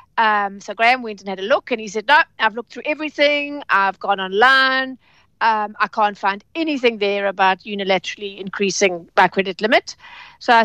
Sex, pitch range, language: female, 195-260 Hz, English